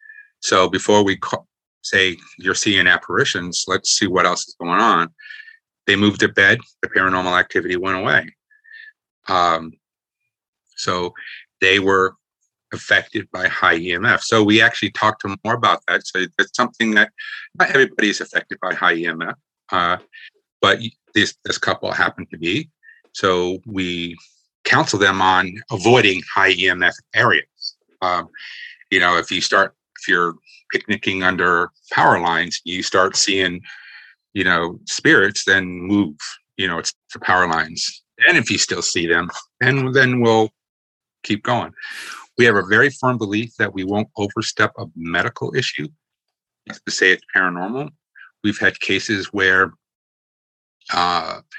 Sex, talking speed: male, 150 wpm